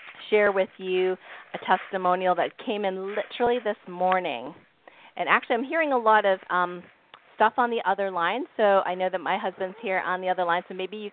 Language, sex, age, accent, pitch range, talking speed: English, female, 30-49, American, 180-225 Hz, 205 wpm